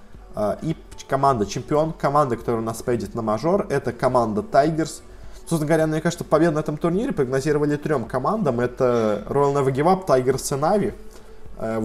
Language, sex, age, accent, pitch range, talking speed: Russian, male, 20-39, native, 125-160 Hz, 165 wpm